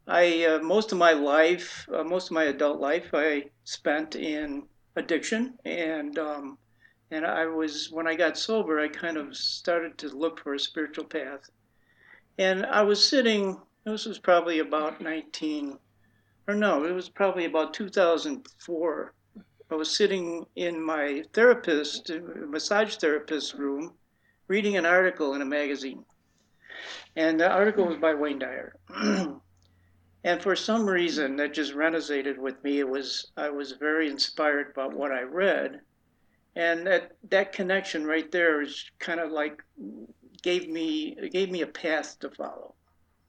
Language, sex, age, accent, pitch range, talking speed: English, male, 60-79, American, 145-185 Hz, 155 wpm